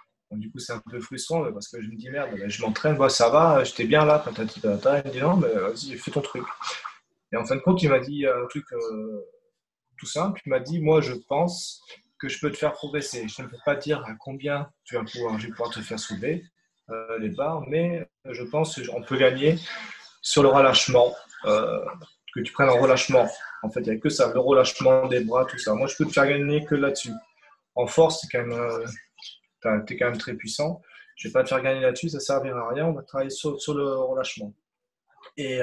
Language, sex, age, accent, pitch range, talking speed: French, male, 20-39, French, 120-155 Hz, 245 wpm